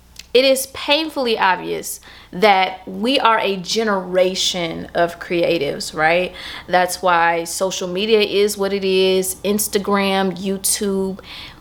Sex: female